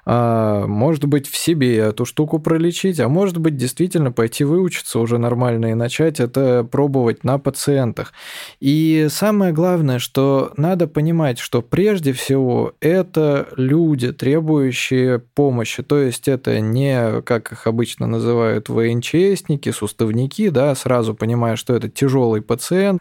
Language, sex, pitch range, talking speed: Russian, male, 120-155 Hz, 135 wpm